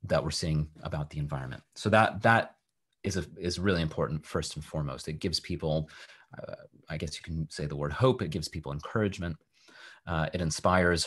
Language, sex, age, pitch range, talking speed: English, male, 30-49, 80-95 Hz, 195 wpm